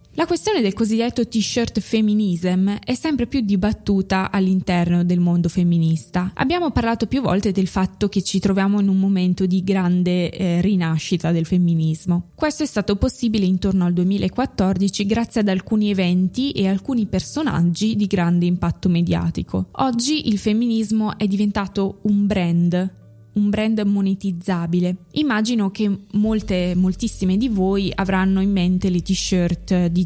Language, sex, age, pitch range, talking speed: Italian, female, 20-39, 180-215 Hz, 145 wpm